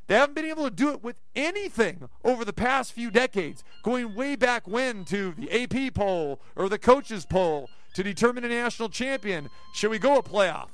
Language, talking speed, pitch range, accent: English, 200 wpm, 185-240 Hz, American